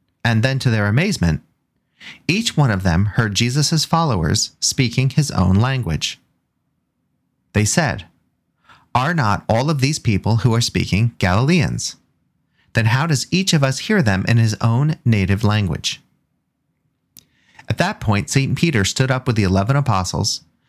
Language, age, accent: English, 30-49, American